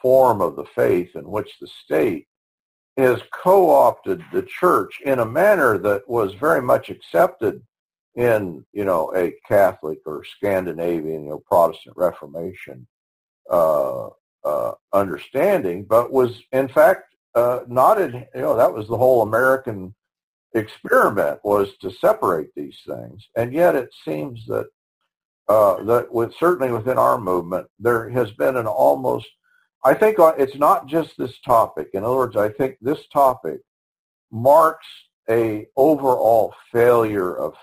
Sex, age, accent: male, 50-69, American